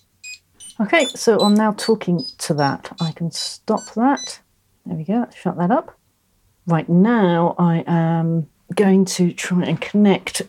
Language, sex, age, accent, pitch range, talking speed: English, female, 40-59, British, 165-210 Hz, 150 wpm